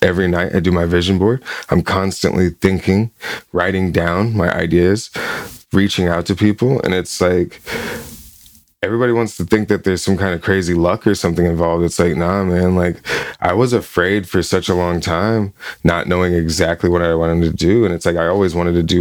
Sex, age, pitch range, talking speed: male, 20-39, 90-100 Hz, 200 wpm